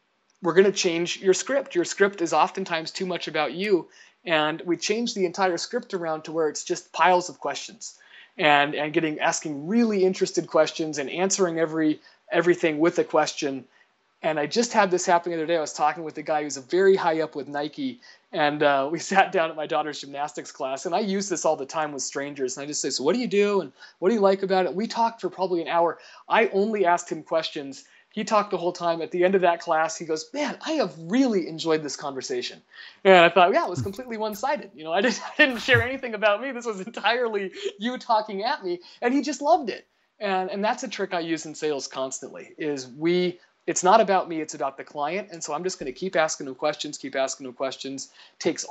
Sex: male